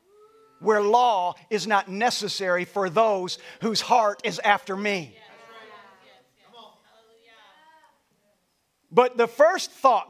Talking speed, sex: 95 wpm, male